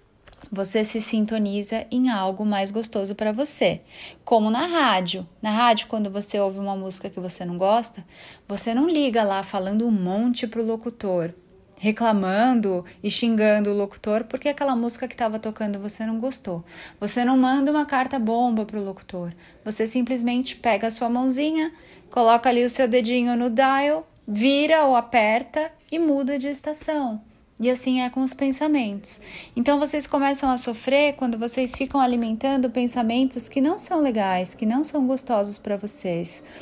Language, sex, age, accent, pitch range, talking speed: Portuguese, female, 30-49, Brazilian, 210-265 Hz, 165 wpm